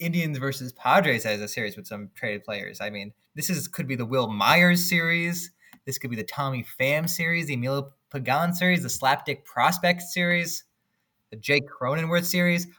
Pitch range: 125-165 Hz